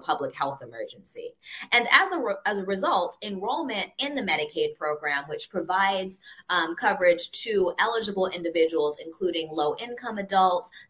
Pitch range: 165-235 Hz